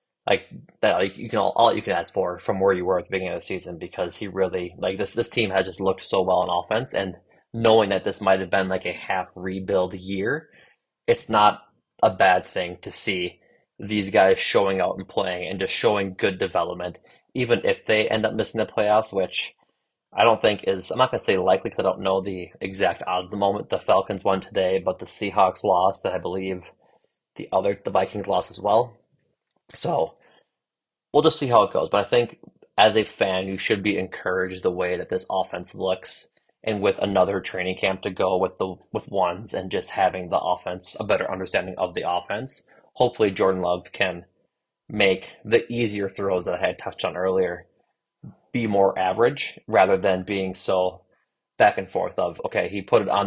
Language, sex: English, male